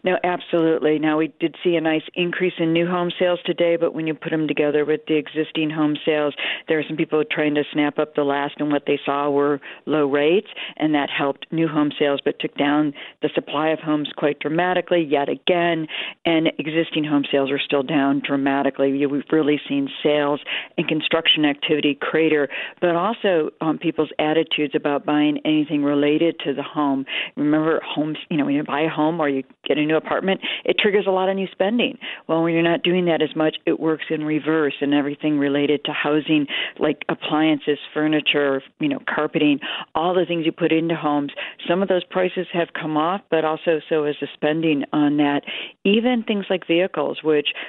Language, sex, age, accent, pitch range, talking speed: English, female, 50-69, American, 145-170 Hz, 200 wpm